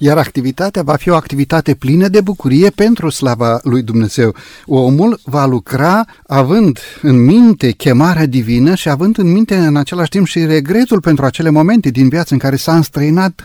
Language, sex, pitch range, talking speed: Romanian, male, 135-180 Hz, 175 wpm